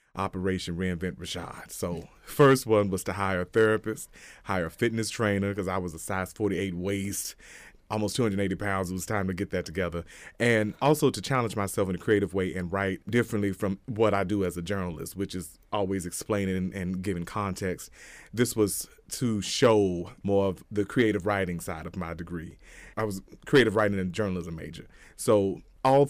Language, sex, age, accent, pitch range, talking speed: English, male, 30-49, American, 90-105 Hz, 185 wpm